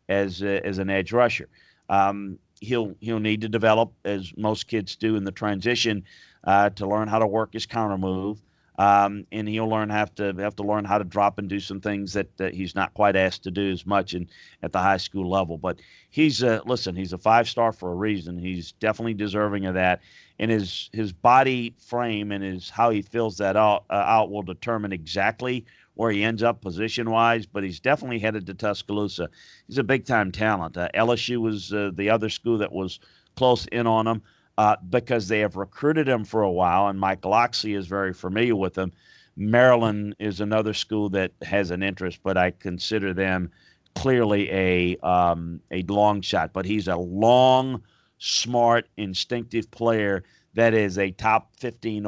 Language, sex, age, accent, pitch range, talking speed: English, male, 40-59, American, 95-110 Hz, 195 wpm